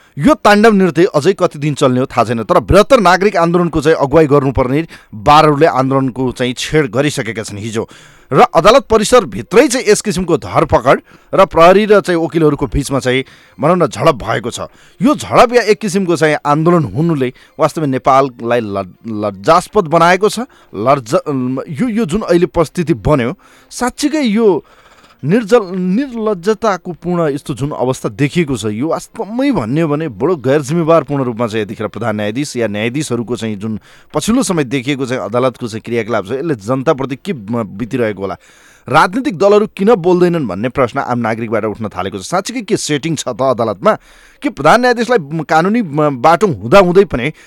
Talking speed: 120 wpm